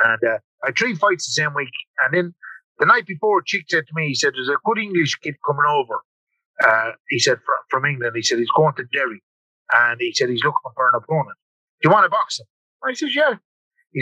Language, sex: English, male